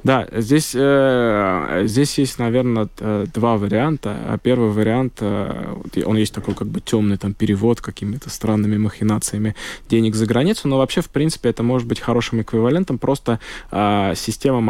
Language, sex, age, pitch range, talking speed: Russian, male, 20-39, 105-125 Hz, 135 wpm